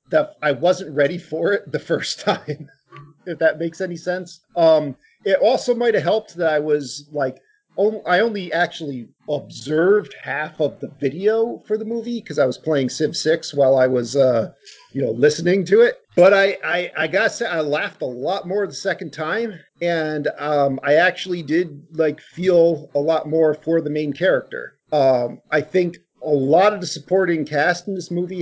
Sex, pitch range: male, 145-190 Hz